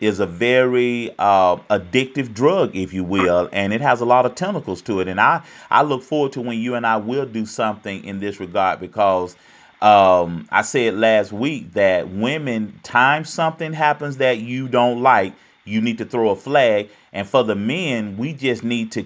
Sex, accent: male, American